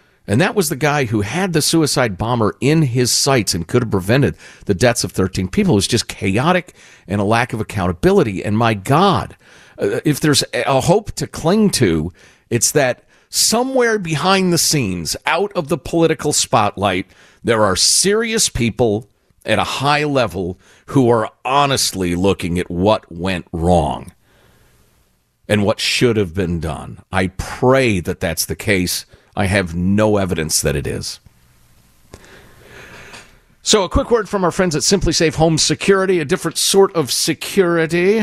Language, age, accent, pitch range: English, 50-69, American, 105-170 Hz